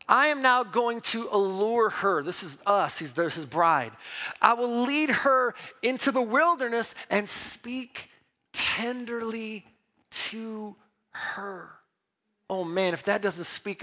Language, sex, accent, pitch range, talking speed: English, male, American, 180-250 Hz, 135 wpm